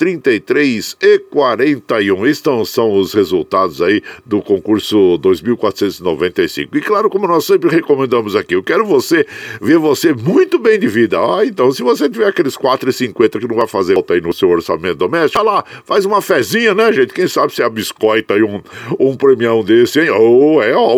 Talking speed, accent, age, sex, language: 190 wpm, Brazilian, 50-69, male, Portuguese